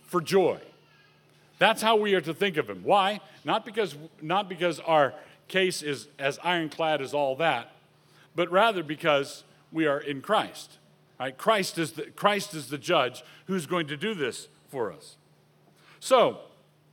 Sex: male